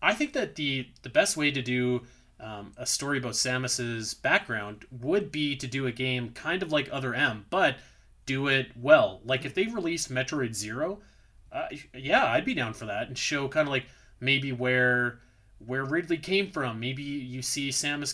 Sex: male